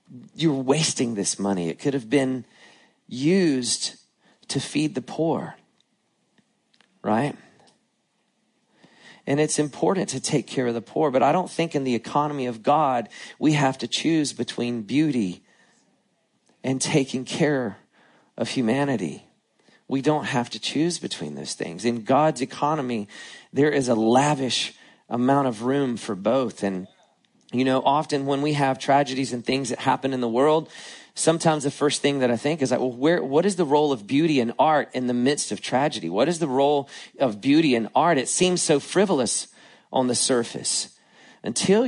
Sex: male